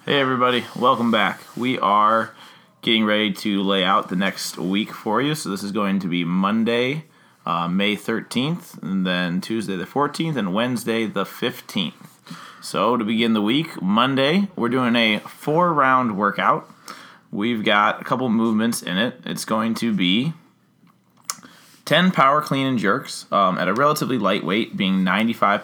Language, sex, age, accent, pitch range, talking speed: English, male, 20-39, American, 100-135 Hz, 165 wpm